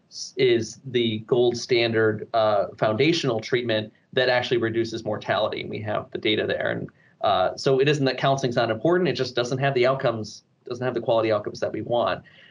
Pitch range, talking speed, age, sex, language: 115-145 Hz, 195 wpm, 30-49, male, English